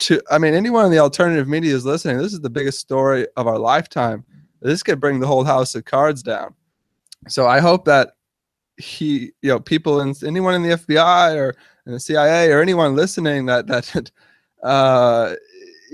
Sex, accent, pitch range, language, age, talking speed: male, American, 130-160 Hz, English, 20-39, 190 wpm